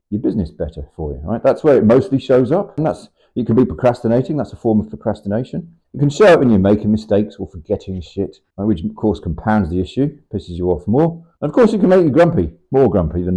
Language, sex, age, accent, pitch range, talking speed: English, male, 40-59, British, 90-120 Hz, 250 wpm